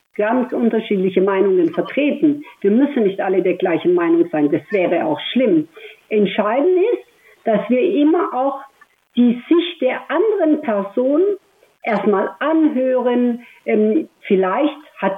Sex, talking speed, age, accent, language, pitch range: female, 125 wpm, 60-79, German, German, 220-290 Hz